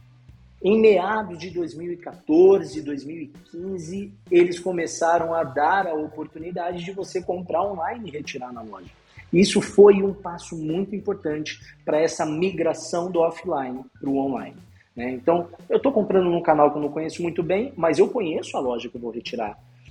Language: Portuguese